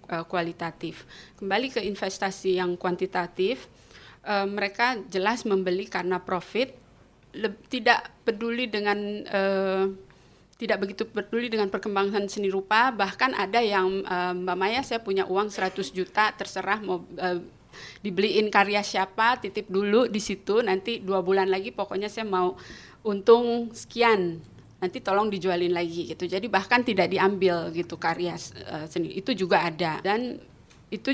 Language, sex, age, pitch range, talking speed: Indonesian, female, 20-39, 180-215 Hz, 135 wpm